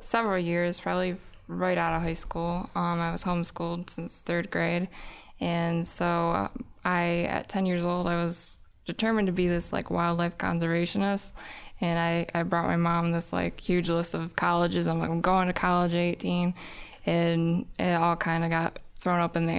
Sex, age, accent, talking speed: female, 20-39, American, 185 wpm